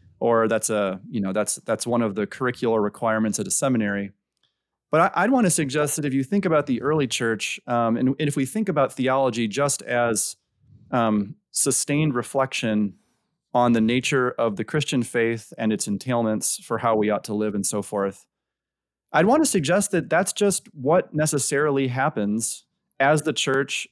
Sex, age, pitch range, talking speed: male, 30-49, 115-155 Hz, 185 wpm